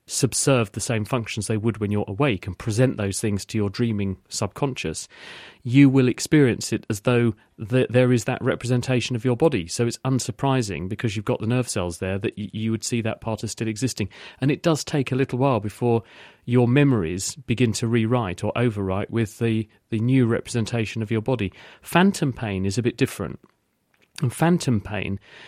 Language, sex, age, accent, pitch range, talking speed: English, male, 40-59, British, 105-130 Hz, 195 wpm